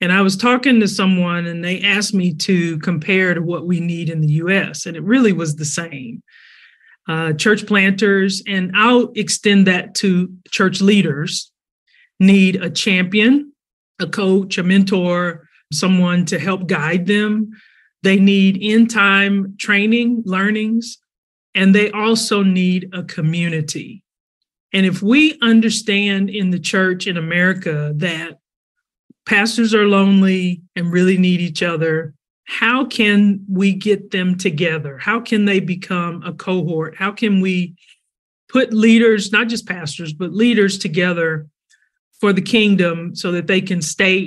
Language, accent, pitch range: English, American, 175-205 Hz